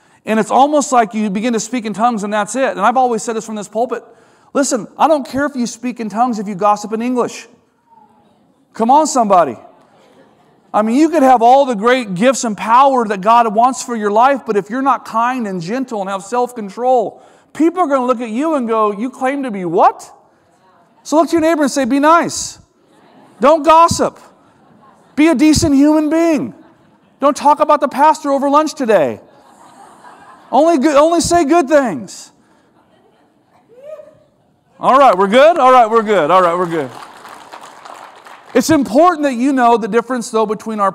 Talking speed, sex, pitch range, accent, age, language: 190 wpm, male, 215-280 Hz, American, 40-59, English